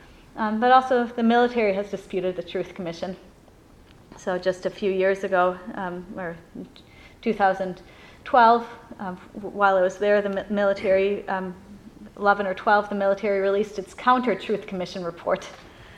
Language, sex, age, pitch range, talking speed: English, female, 30-49, 195-230 Hz, 140 wpm